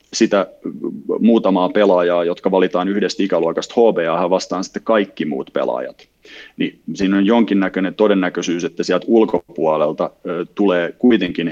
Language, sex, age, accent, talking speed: Finnish, male, 30-49, native, 120 wpm